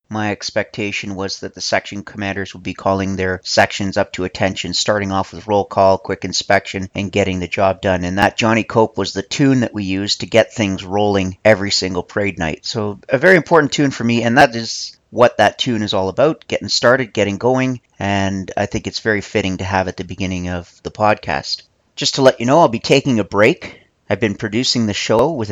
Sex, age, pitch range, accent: male, 40-59, 95-120 Hz, American